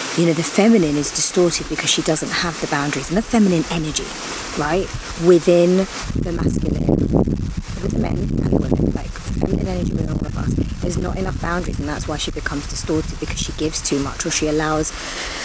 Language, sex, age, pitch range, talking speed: English, female, 30-49, 155-190 Hz, 200 wpm